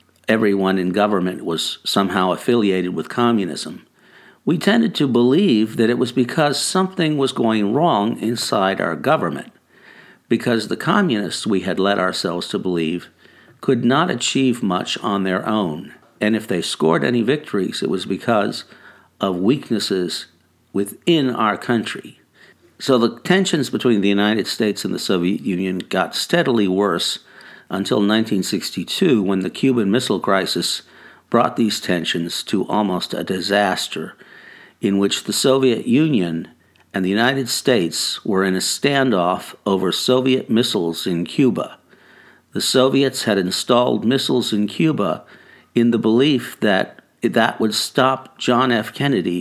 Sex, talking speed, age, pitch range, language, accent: male, 140 wpm, 60-79, 95-130 Hz, English, American